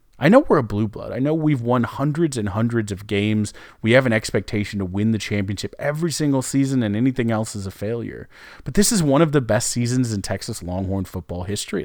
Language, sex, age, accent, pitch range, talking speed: English, male, 30-49, American, 100-125 Hz, 230 wpm